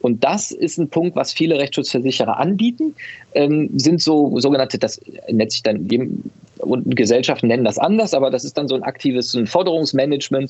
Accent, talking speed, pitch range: German, 175 wpm, 130-175 Hz